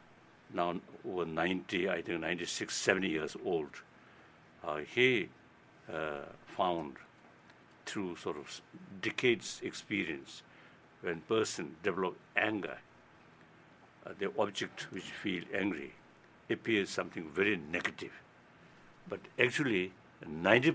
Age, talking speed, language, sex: 60-79, 100 wpm, English, male